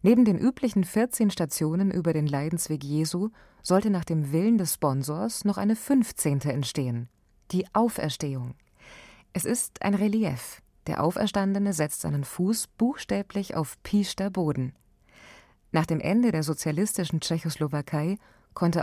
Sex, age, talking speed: female, 20-39, 130 wpm